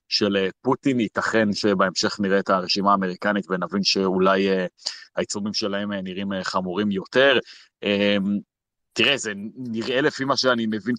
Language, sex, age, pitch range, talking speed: Hebrew, male, 30-49, 95-115 Hz, 140 wpm